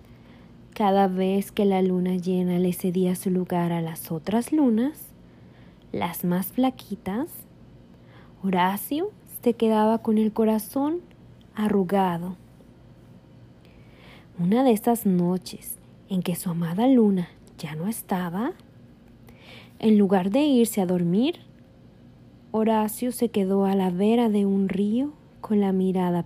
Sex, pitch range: female, 175-225 Hz